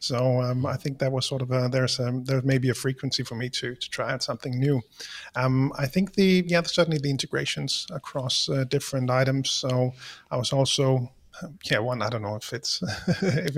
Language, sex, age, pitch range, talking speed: English, male, 30-49, 130-155 Hz, 205 wpm